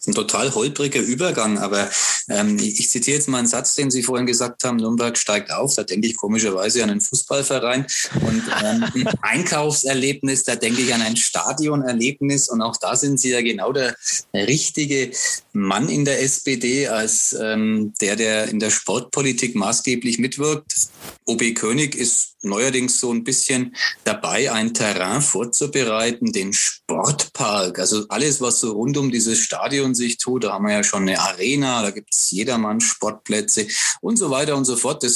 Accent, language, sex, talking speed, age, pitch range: German, German, male, 175 wpm, 20-39, 110-140 Hz